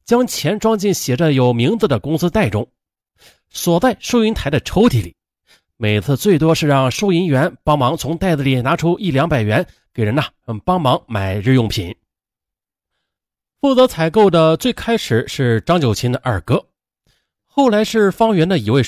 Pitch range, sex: 110-175 Hz, male